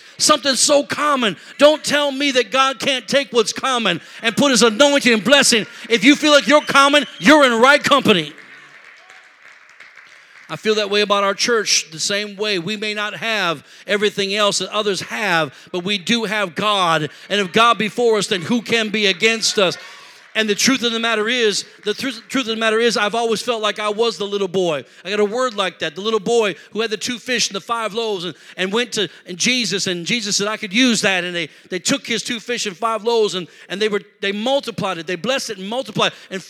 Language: English